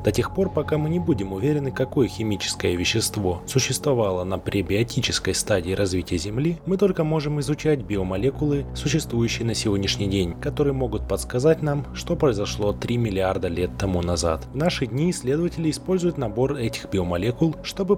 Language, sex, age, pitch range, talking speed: Russian, male, 20-39, 95-145 Hz, 155 wpm